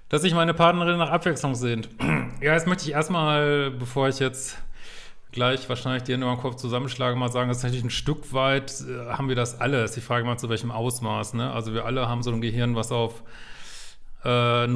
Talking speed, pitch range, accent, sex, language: 210 wpm, 125-145 Hz, German, male, German